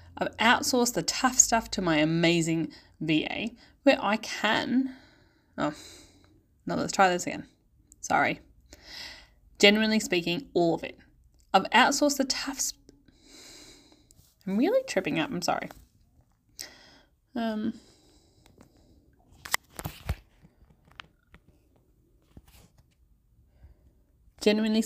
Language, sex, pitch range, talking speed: English, female, 145-240 Hz, 90 wpm